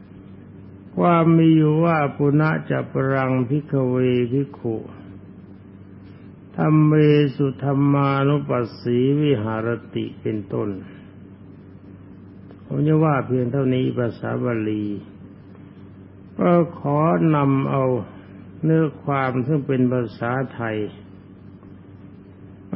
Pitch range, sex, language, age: 95-140 Hz, male, Thai, 60-79